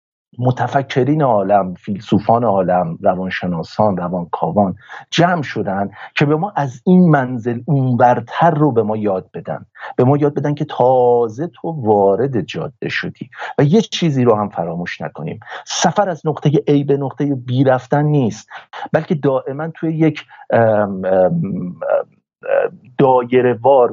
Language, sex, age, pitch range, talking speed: Persian, male, 50-69, 115-150 Hz, 130 wpm